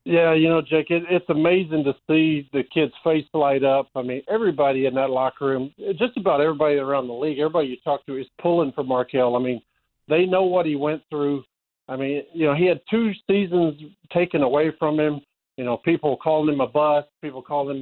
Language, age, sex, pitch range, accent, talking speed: English, 50-69, male, 140-170 Hz, American, 215 wpm